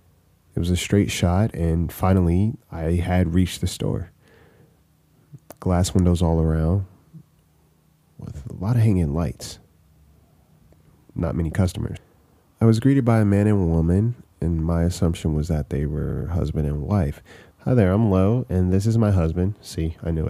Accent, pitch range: American, 80-105 Hz